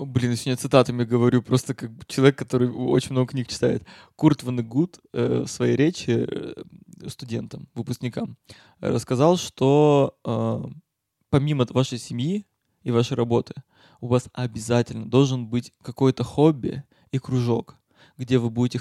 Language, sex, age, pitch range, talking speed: Russian, male, 20-39, 120-155 Hz, 130 wpm